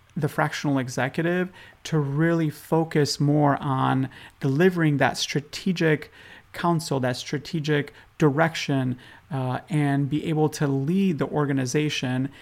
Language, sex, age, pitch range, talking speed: English, male, 30-49, 135-160 Hz, 110 wpm